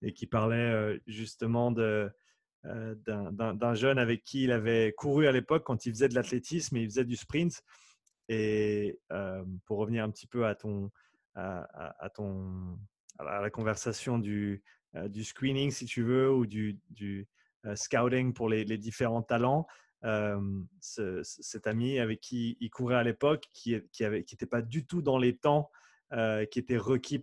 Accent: French